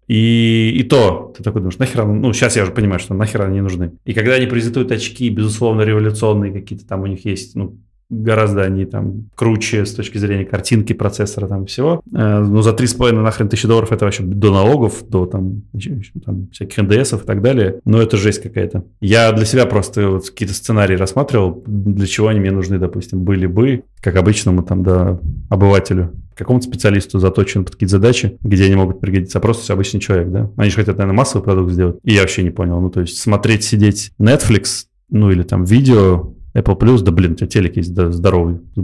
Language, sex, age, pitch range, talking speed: Russian, male, 20-39, 95-115 Hz, 200 wpm